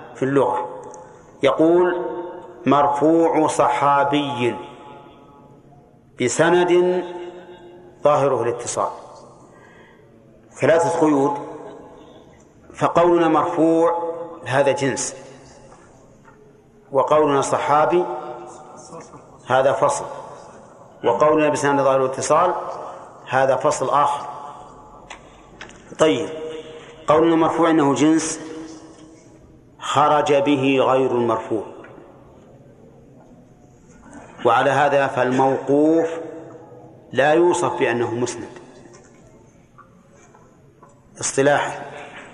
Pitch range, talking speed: 135-165 Hz, 60 wpm